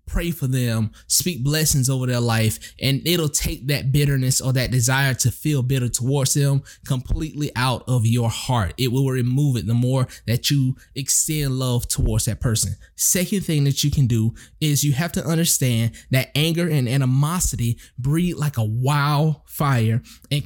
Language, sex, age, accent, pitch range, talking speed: English, male, 20-39, American, 125-150 Hz, 175 wpm